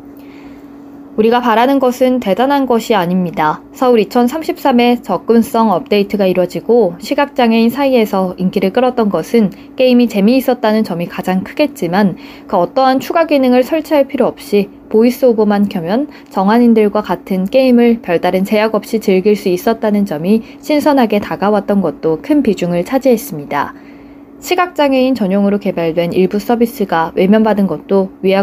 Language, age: Korean, 20-39